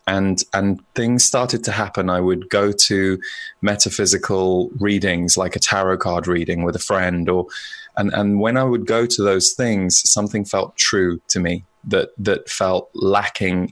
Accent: British